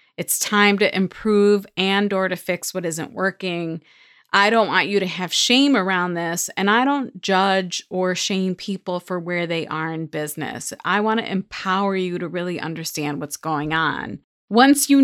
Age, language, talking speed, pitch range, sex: 30-49, English, 185 wpm, 175-215 Hz, female